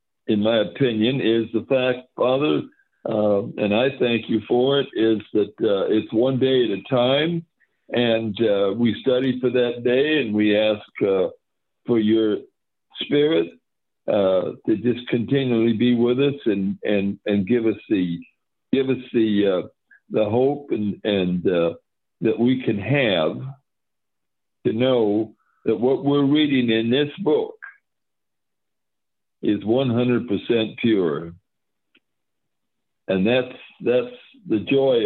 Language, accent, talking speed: English, American, 135 wpm